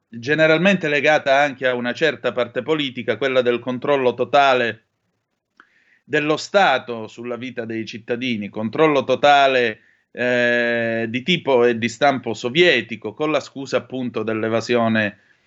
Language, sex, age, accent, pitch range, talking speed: Italian, male, 30-49, native, 120-150 Hz, 125 wpm